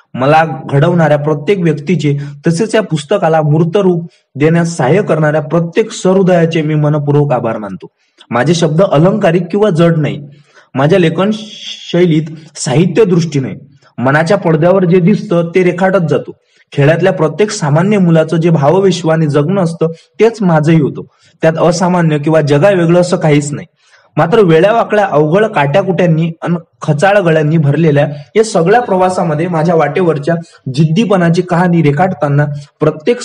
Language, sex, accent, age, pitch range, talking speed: Hindi, male, native, 20-39, 150-185 Hz, 100 wpm